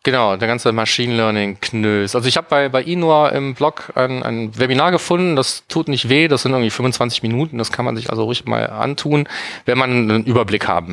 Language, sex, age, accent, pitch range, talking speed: German, male, 30-49, German, 115-135 Hz, 220 wpm